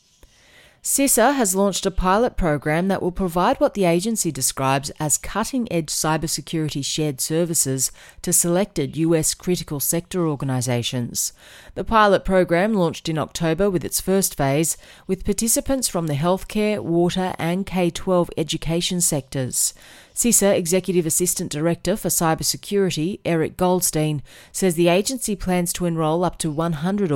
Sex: female